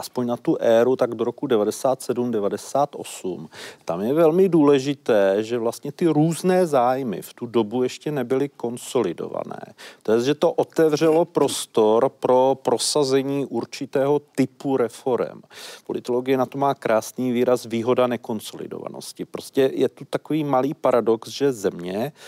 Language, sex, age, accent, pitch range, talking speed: Czech, male, 40-59, native, 120-145 Hz, 130 wpm